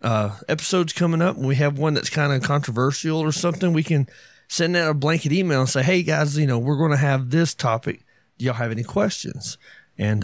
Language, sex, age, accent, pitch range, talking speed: English, male, 30-49, American, 120-155 Hz, 230 wpm